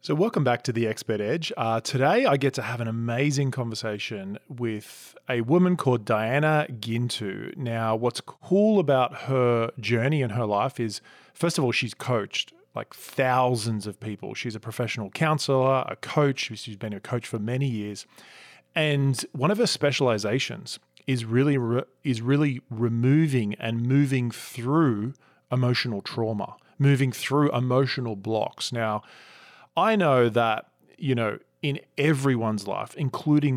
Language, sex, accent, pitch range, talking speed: English, male, Australian, 115-145 Hz, 145 wpm